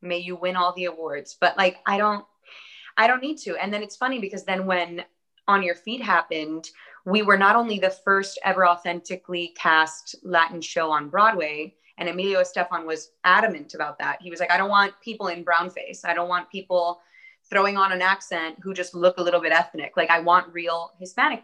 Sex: female